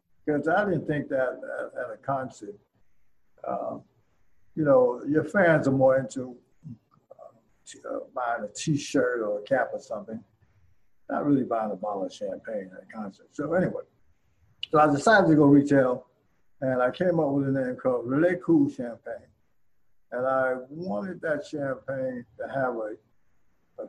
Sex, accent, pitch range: male, American, 125-150 Hz